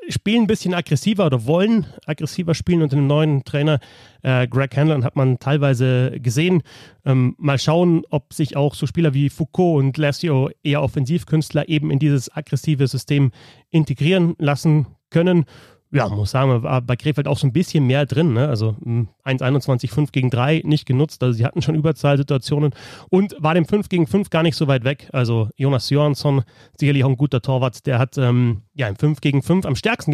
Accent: German